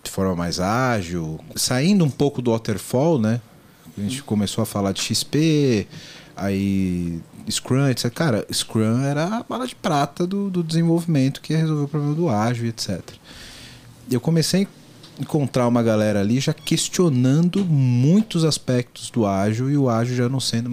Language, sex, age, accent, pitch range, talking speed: Portuguese, male, 40-59, Brazilian, 105-145 Hz, 165 wpm